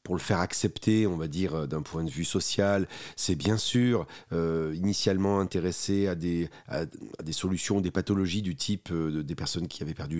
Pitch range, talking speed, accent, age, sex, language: 90-115 Hz, 200 wpm, French, 40-59, male, French